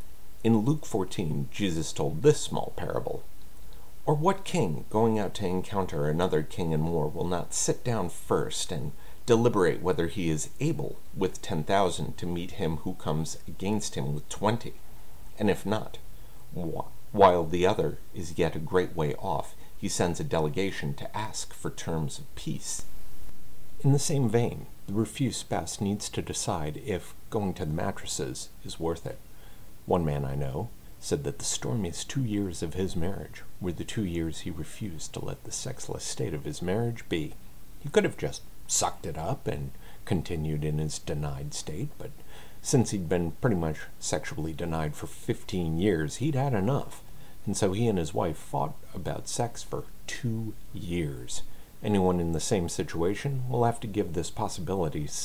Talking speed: 175 wpm